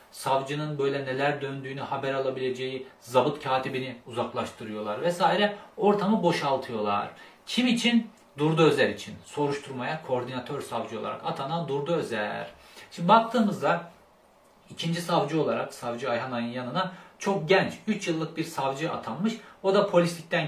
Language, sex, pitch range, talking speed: Turkish, male, 130-195 Hz, 125 wpm